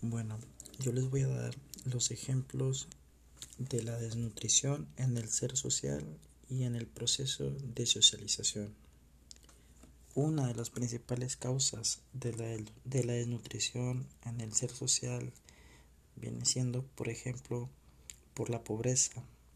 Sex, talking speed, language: male, 125 wpm, Spanish